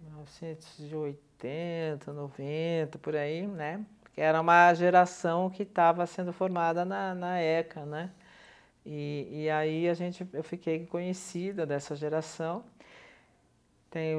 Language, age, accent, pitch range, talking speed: Portuguese, 40-59, Brazilian, 155-185 Hz, 115 wpm